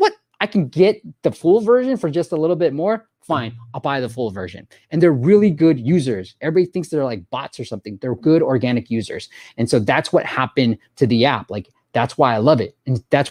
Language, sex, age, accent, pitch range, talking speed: English, male, 20-39, American, 120-155 Hz, 225 wpm